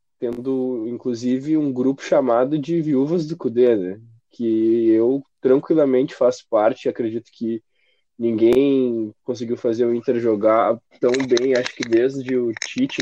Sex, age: male, 20-39